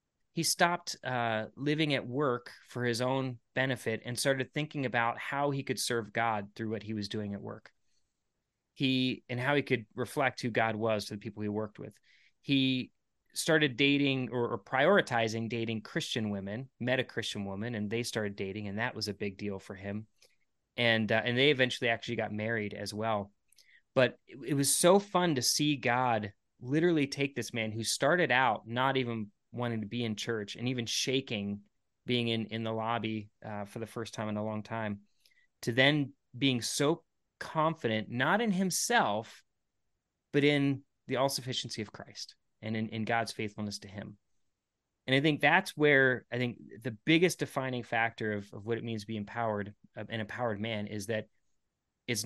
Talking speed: 185 wpm